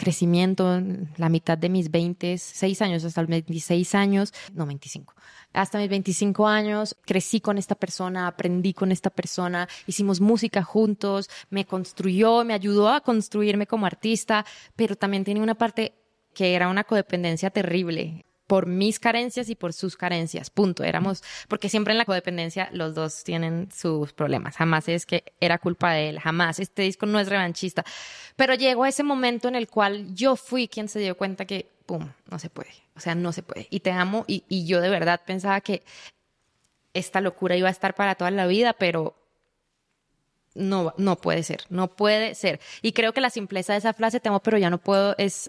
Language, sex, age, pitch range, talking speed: Spanish, female, 20-39, 175-210 Hz, 190 wpm